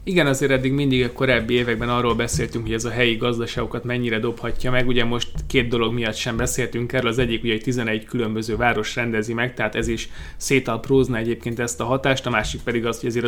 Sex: male